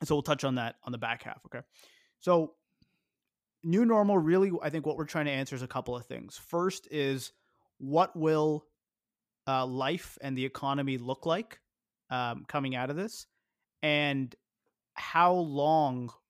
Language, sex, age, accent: English, male, 30-49, American